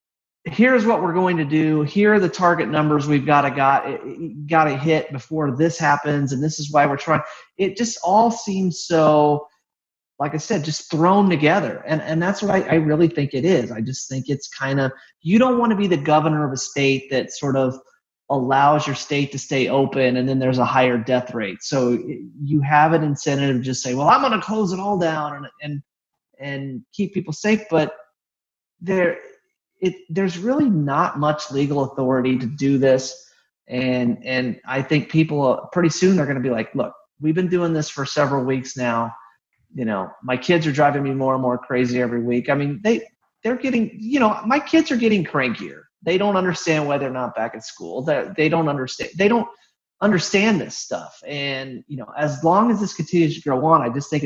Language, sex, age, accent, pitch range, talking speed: English, male, 30-49, American, 135-180 Hz, 215 wpm